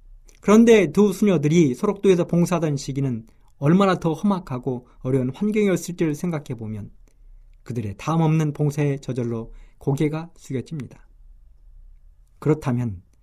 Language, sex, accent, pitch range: Korean, male, native, 120-185 Hz